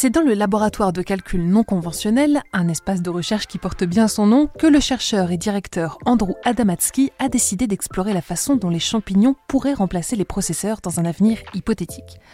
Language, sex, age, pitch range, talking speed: French, female, 20-39, 175-220 Hz, 195 wpm